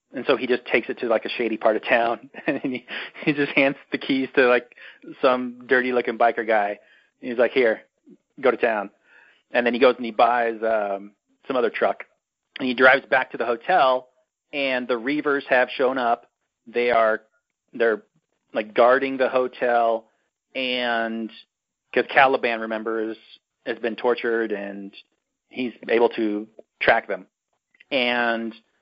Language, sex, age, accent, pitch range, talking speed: English, male, 30-49, American, 115-130 Hz, 165 wpm